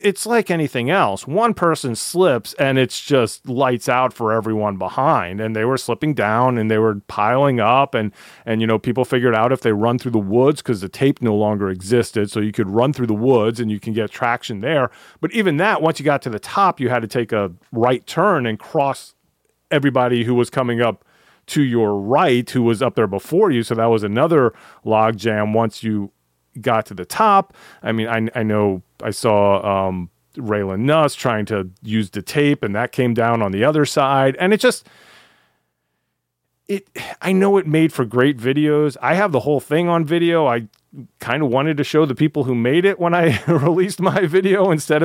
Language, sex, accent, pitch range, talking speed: English, male, American, 110-155 Hz, 210 wpm